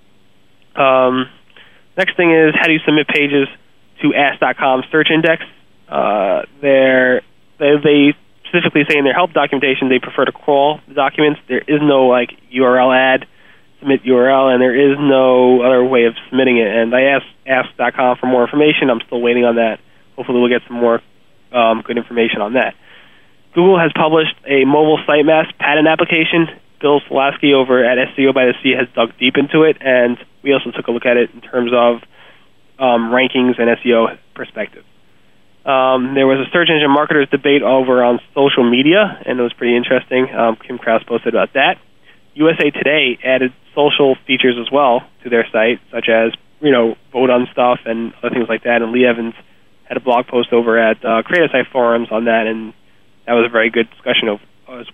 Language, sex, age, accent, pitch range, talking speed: English, male, 20-39, American, 120-145 Hz, 190 wpm